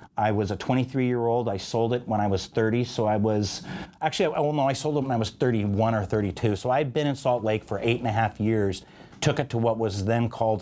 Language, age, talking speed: English, 40-59, 265 wpm